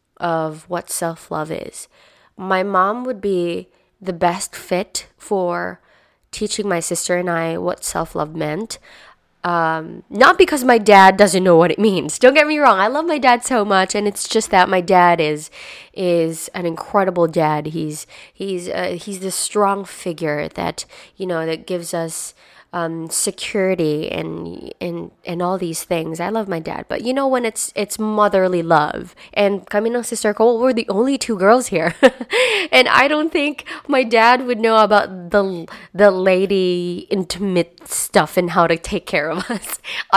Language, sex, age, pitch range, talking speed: Filipino, female, 20-39, 170-225 Hz, 175 wpm